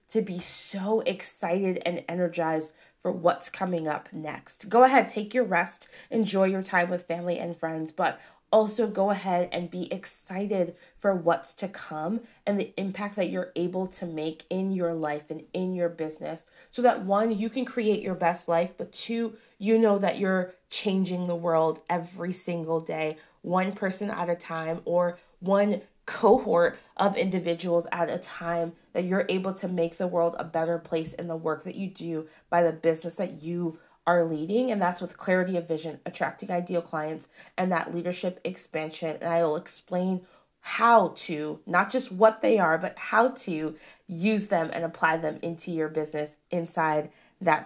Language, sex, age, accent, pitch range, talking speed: English, female, 20-39, American, 165-195 Hz, 180 wpm